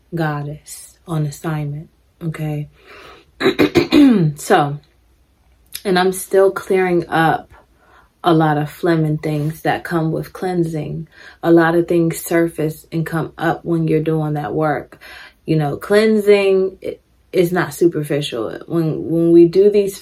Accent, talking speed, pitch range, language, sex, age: American, 135 wpm, 160-175 Hz, English, female, 20-39